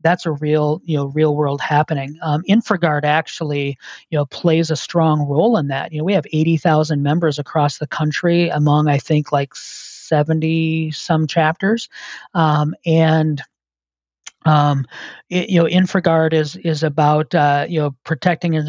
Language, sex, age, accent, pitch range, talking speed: English, male, 40-59, American, 150-165 Hz, 155 wpm